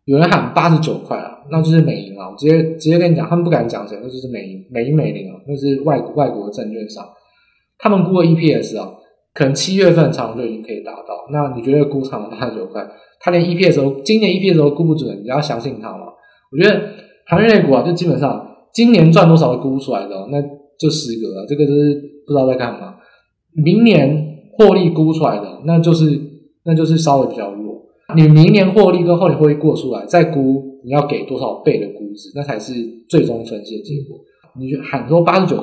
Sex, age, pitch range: male, 20-39, 135-170 Hz